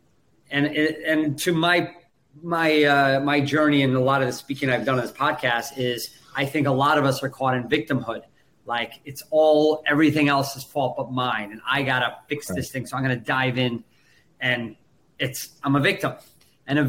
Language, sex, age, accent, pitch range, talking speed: English, male, 30-49, American, 130-170 Hz, 205 wpm